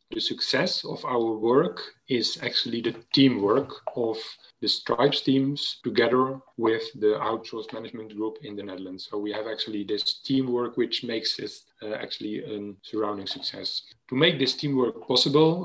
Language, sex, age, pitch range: Bulgarian, male, 30-49, 110-130 Hz